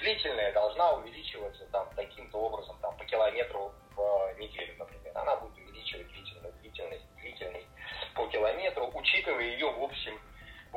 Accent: native